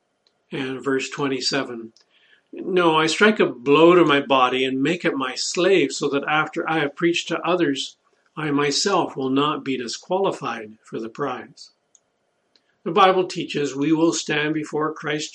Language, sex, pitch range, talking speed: English, male, 135-165 Hz, 160 wpm